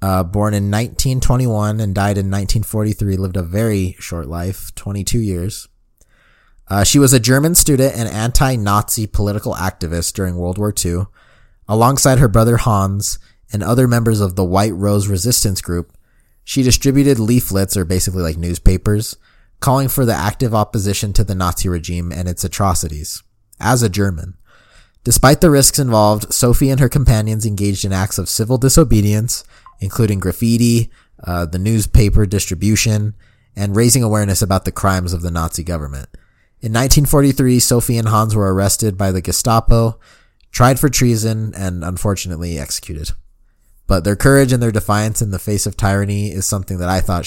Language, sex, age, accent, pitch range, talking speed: English, male, 20-39, American, 95-115 Hz, 160 wpm